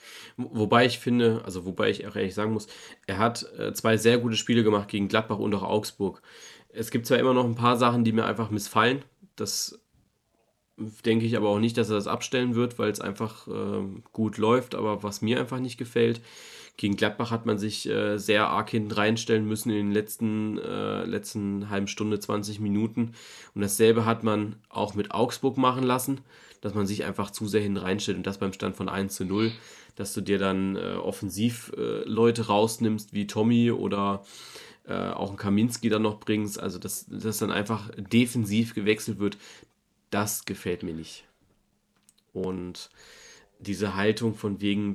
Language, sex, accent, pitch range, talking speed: German, male, German, 100-115 Hz, 180 wpm